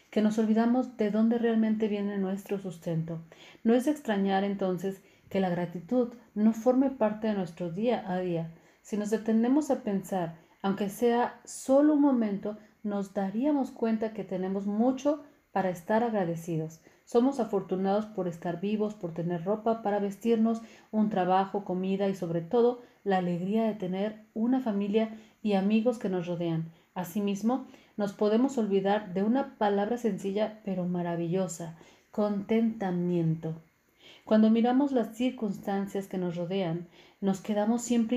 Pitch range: 185-225 Hz